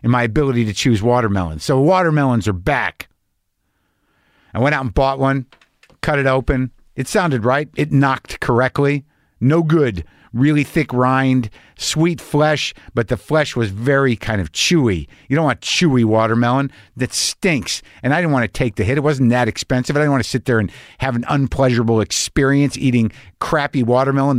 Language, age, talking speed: English, 50-69, 180 wpm